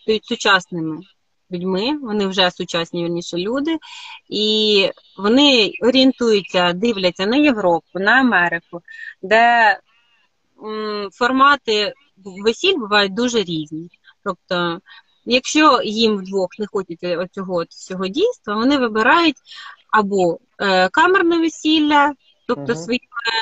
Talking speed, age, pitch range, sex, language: 95 wpm, 20-39, 180-235 Hz, female, Ukrainian